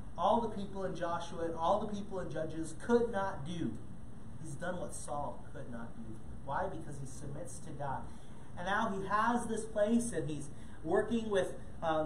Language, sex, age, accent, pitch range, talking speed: English, male, 30-49, American, 165-210 Hz, 190 wpm